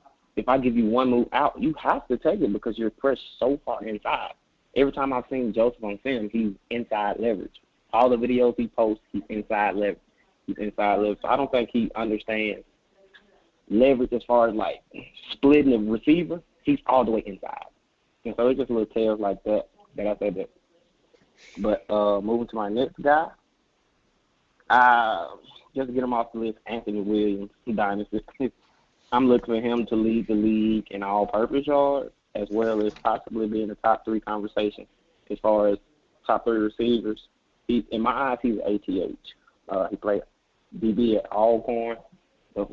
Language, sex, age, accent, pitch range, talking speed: English, male, 20-39, American, 105-120 Hz, 185 wpm